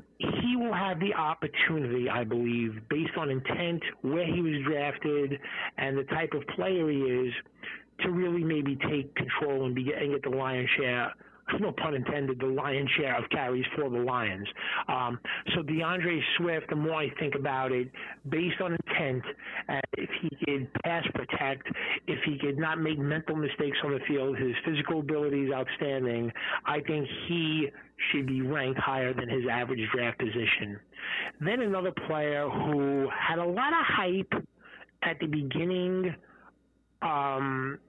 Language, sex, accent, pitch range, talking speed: English, male, American, 130-170 Hz, 160 wpm